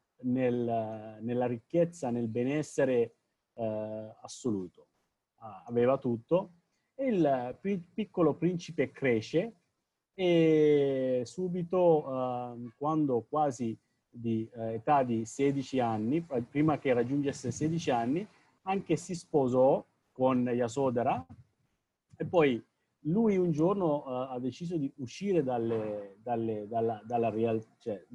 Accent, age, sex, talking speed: Italian, 40-59, male, 95 wpm